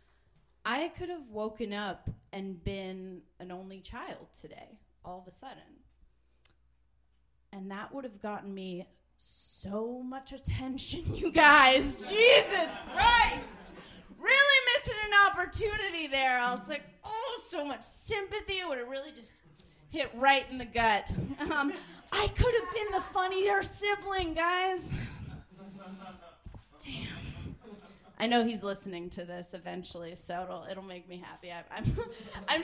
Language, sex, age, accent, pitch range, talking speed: English, female, 30-49, American, 195-295 Hz, 140 wpm